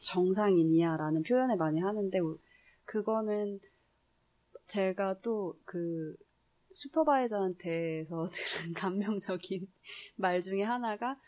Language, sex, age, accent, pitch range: Korean, female, 20-39, native, 165-215 Hz